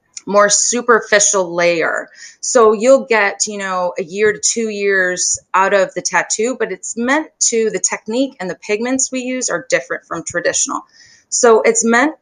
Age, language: 30-49, English